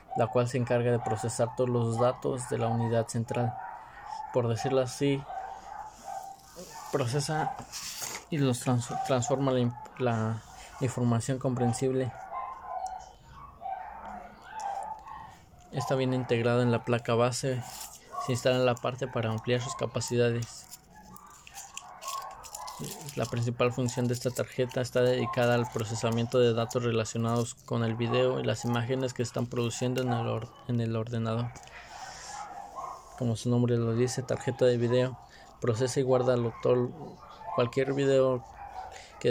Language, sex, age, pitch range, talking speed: Spanish, male, 20-39, 120-135 Hz, 125 wpm